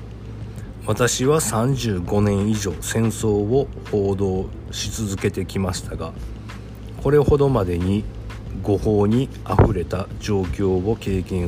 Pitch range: 100-115 Hz